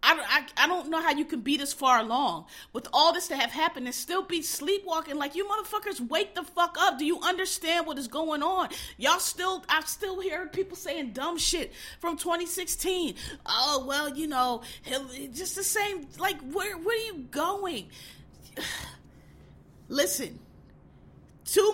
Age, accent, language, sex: 30-49, American, English, female